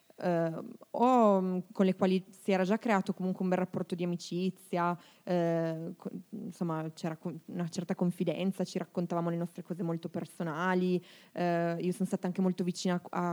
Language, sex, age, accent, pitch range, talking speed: Italian, female, 20-39, native, 175-210 Hz, 150 wpm